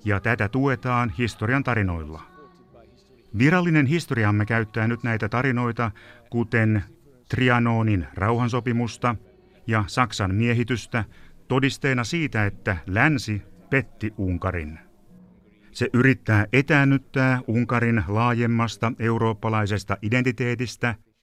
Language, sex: Finnish, male